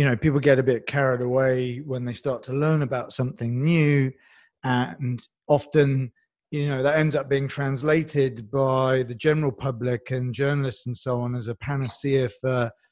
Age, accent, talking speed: 30-49, British, 175 wpm